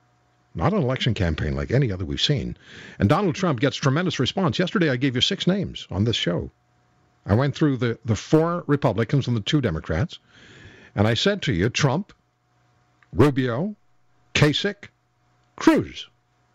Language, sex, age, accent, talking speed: English, male, 60-79, American, 160 wpm